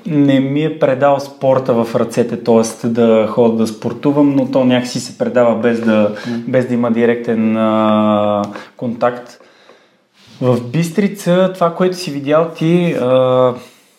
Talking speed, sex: 145 wpm, male